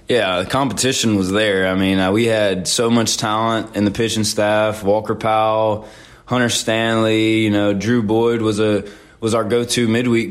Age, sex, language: 20-39, male, English